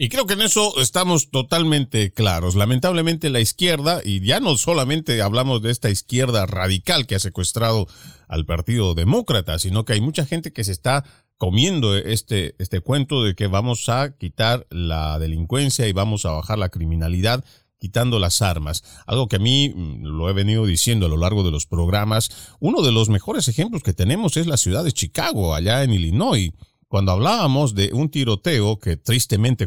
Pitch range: 95-135 Hz